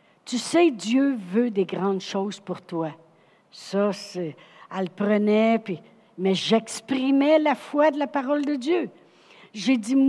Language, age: French, 60-79